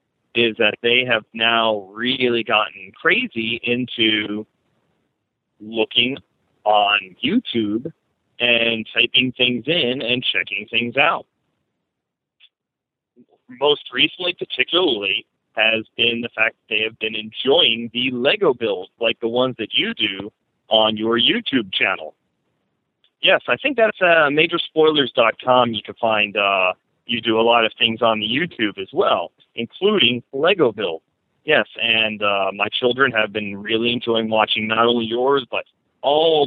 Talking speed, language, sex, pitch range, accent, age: 140 wpm, English, male, 110-140 Hz, American, 40-59